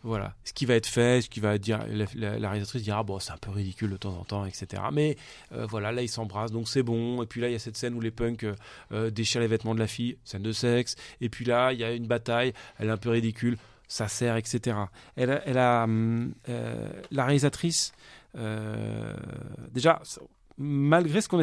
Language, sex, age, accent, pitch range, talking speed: French, male, 30-49, French, 115-140 Hz, 230 wpm